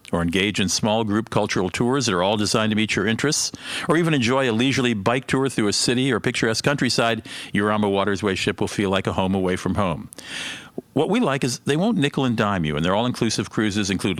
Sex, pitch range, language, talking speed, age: male, 95-125 Hz, English, 235 wpm, 50-69